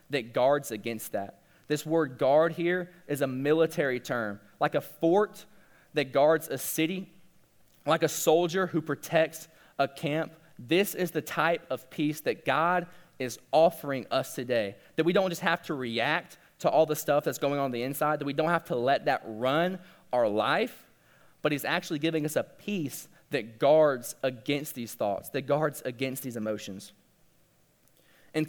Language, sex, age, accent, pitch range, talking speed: English, male, 20-39, American, 140-175 Hz, 175 wpm